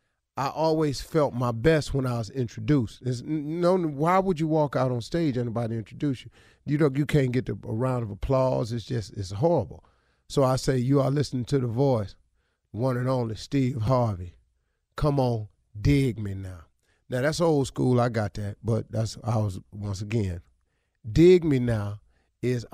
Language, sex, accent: English, male, American